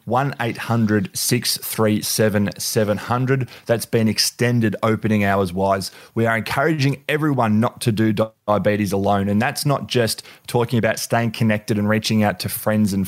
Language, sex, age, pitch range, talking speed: English, male, 20-39, 100-120 Hz, 135 wpm